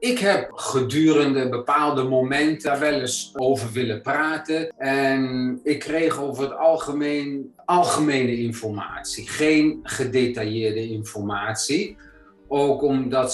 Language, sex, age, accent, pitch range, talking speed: Dutch, male, 40-59, Dutch, 110-135 Hz, 105 wpm